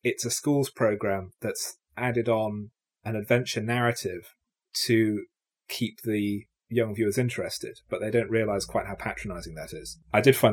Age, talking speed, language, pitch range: 30-49, 160 wpm, English, 105-130 Hz